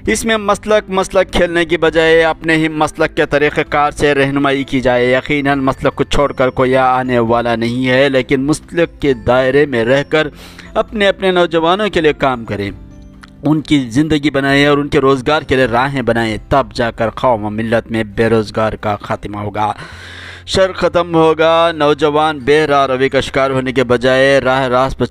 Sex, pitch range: male, 110-145 Hz